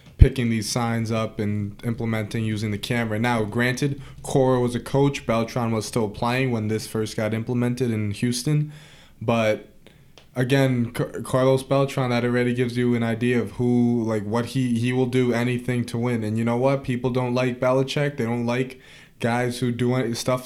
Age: 20-39